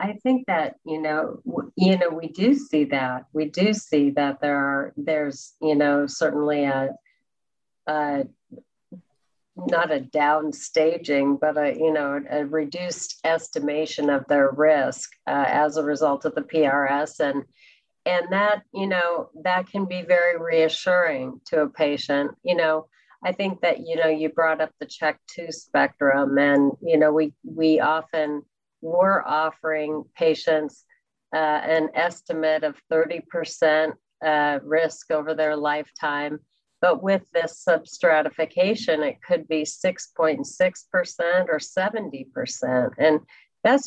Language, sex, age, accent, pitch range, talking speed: English, female, 40-59, American, 150-175 Hz, 140 wpm